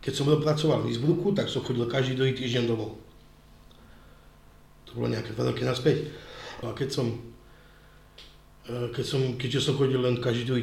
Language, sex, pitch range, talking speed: Slovak, male, 120-150 Hz, 145 wpm